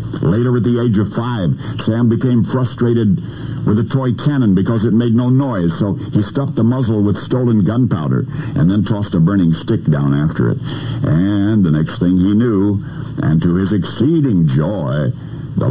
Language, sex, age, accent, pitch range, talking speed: English, male, 60-79, American, 90-125 Hz, 180 wpm